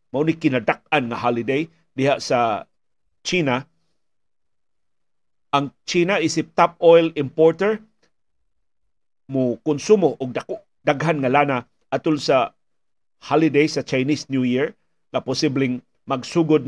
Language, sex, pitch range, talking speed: Filipino, male, 130-155 Hz, 110 wpm